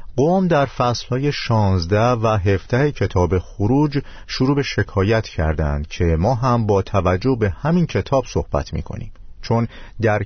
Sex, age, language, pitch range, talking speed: male, 50-69, Persian, 90-115 Hz, 140 wpm